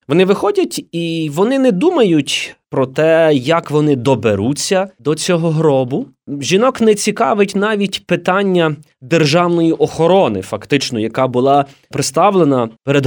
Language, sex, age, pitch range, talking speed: Ukrainian, male, 20-39, 140-180 Hz, 120 wpm